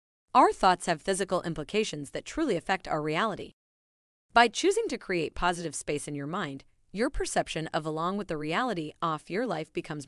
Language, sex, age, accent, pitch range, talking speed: English, female, 30-49, American, 155-225 Hz, 180 wpm